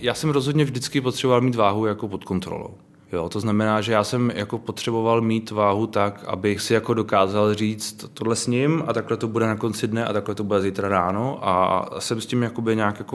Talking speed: 195 wpm